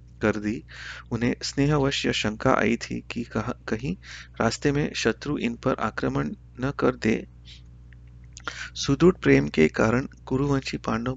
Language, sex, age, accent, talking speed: Hindi, male, 30-49, native, 145 wpm